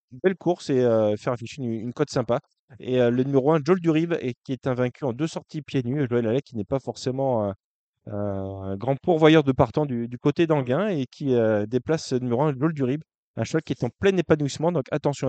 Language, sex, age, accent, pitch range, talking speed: French, male, 20-39, French, 115-145 Hz, 245 wpm